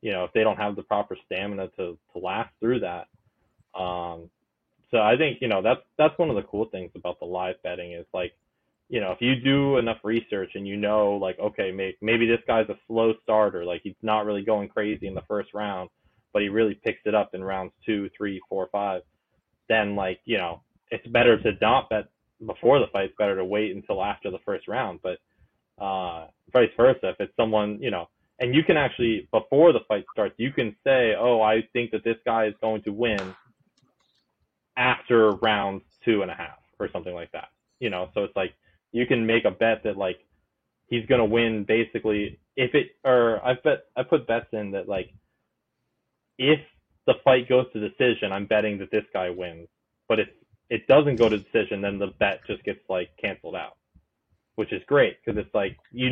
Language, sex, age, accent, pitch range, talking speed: English, male, 20-39, American, 100-115 Hz, 210 wpm